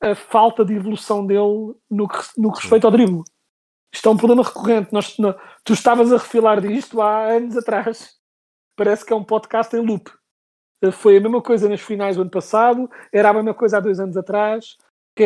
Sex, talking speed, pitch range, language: male, 195 wpm, 195-235 Hz, Portuguese